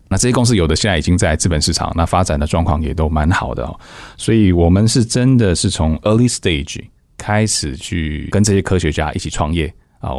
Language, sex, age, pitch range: Chinese, male, 20-39, 80-100 Hz